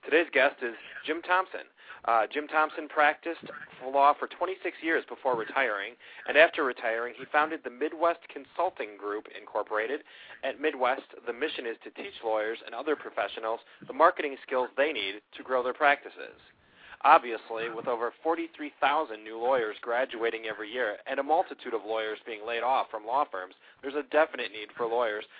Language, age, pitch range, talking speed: English, 40-59, 115-150 Hz, 170 wpm